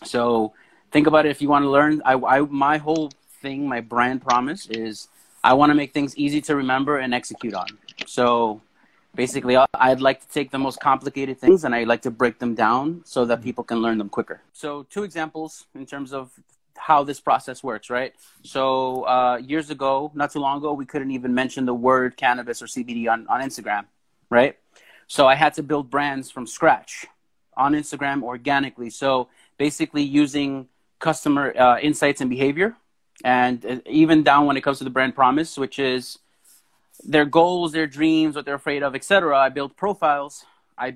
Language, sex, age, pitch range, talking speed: English, male, 30-49, 125-150 Hz, 190 wpm